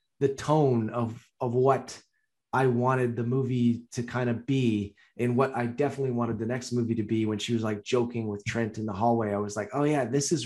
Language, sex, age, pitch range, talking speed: English, male, 30-49, 120-150 Hz, 230 wpm